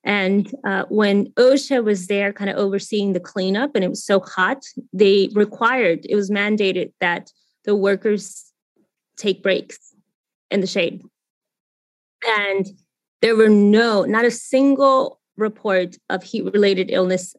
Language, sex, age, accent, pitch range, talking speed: English, female, 20-39, American, 195-230 Hz, 140 wpm